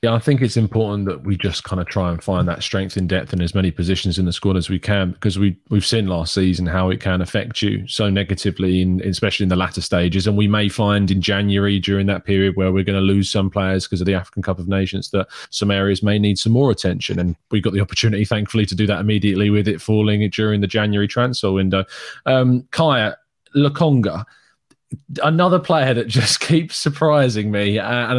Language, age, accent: English, 20-39, British